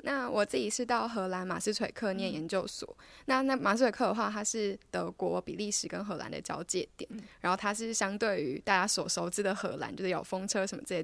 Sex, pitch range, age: female, 185-220 Hz, 10-29